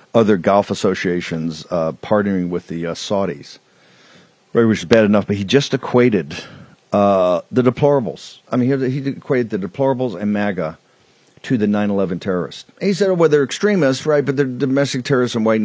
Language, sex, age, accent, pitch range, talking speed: English, male, 50-69, American, 100-135 Hz, 185 wpm